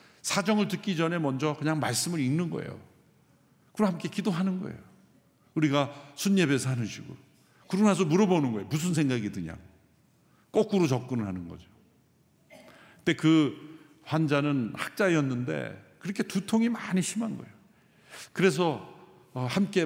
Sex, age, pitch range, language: male, 50-69, 130-185 Hz, Korean